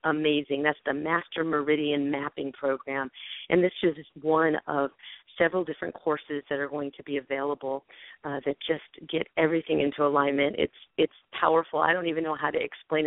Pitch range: 155-205 Hz